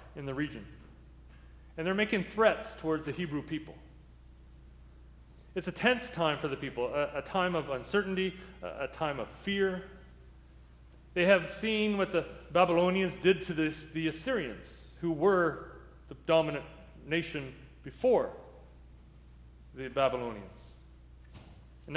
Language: English